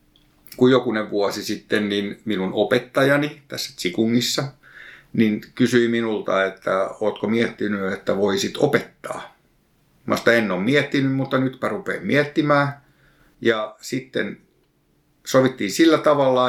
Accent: native